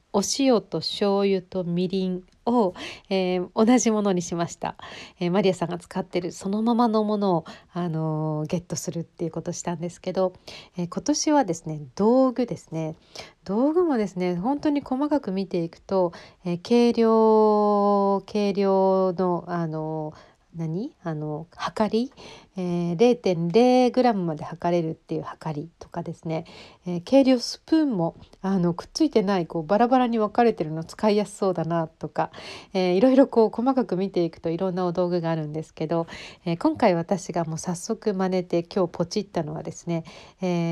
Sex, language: female, Japanese